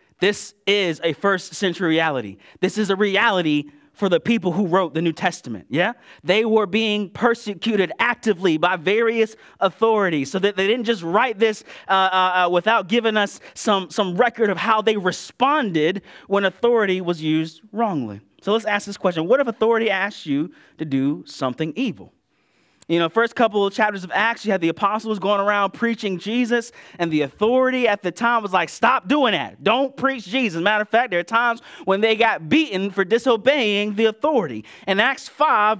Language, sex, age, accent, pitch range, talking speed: English, male, 30-49, American, 185-235 Hz, 190 wpm